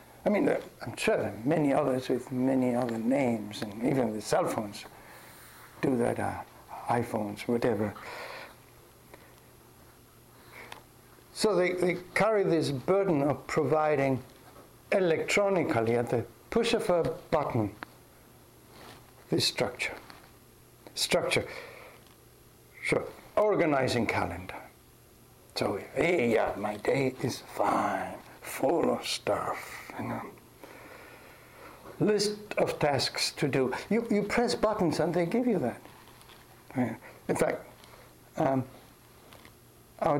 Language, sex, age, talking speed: English, male, 60-79, 105 wpm